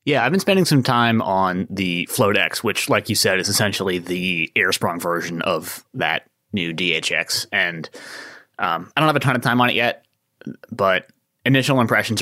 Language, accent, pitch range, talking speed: English, American, 90-125 Hz, 185 wpm